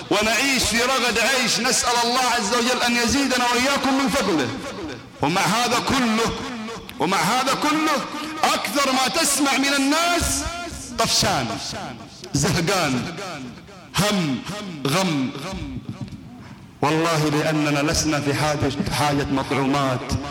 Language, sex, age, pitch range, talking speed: Arabic, male, 50-69, 135-195 Hz, 100 wpm